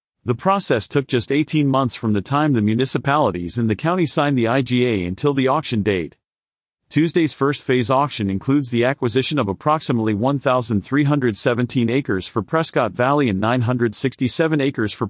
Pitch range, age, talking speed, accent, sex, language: 115-145 Hz, 40-59, 155 wpm, American, male, English